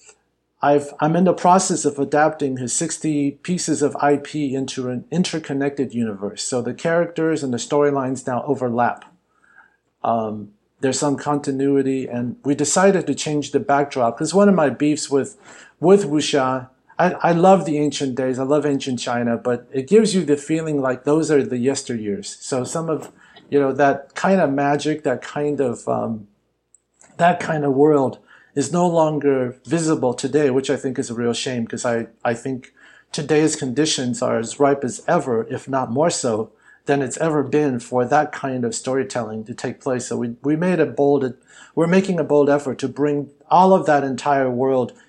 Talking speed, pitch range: 185 wpm, 130-155 Hz